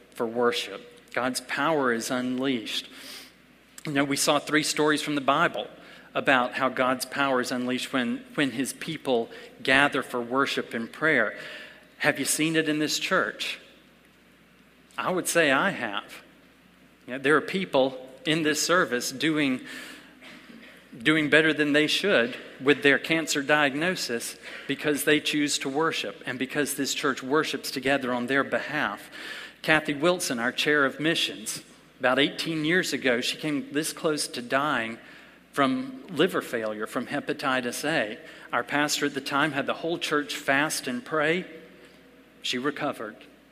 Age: 40-59